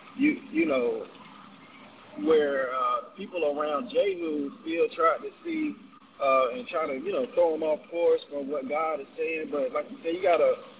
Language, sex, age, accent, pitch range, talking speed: English, male, 20-39, American, 160-260 Hz, 190 wpm